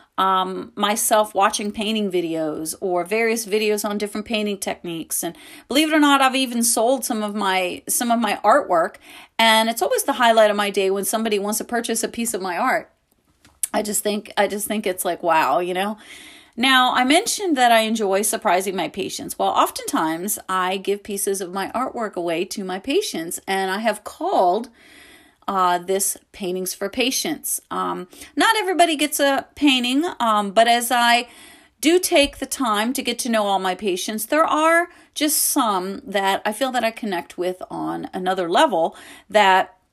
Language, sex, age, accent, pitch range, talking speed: English, female, 30-49, American, 190-265 Hz, 185 wpm